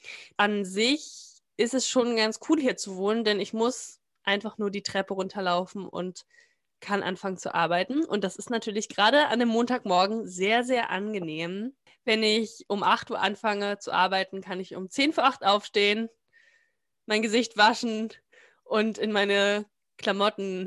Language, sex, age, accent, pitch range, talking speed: German, female, 20-39, German, 195-250 Hz, 165 wpm